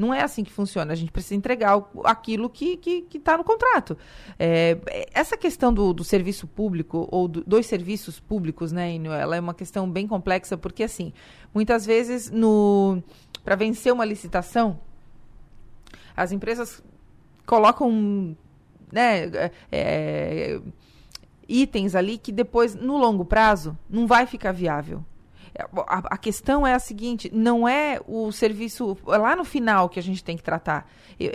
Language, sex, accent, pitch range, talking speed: Portuguese, female, Brazilian, 180-235 Hz, 150 wpm